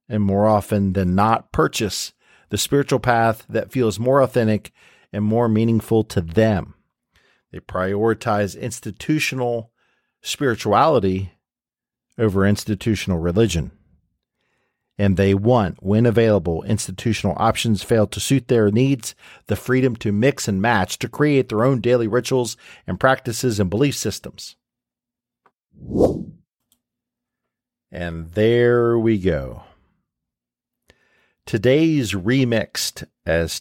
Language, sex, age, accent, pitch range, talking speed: English, male, 50-69, American, 95-115 Hz, 110 wpm